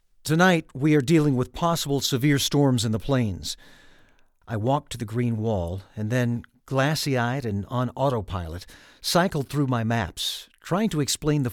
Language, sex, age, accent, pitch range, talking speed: English, male, 50-69, American, 100-140 Hz, 160 wpm